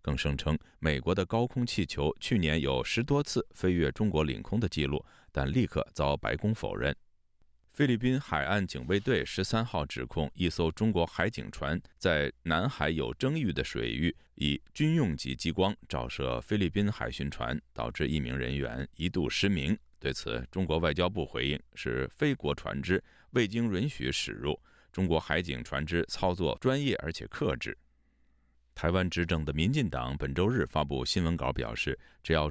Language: Chinese